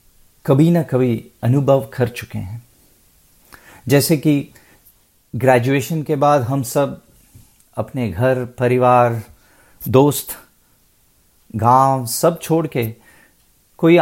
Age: 50-69